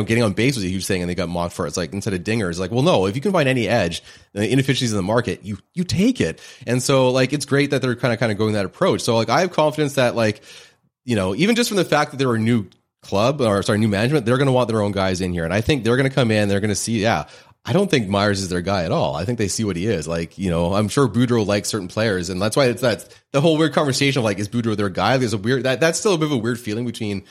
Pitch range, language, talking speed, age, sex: 100-125 Hz, English, 325 wpm, 30-49, male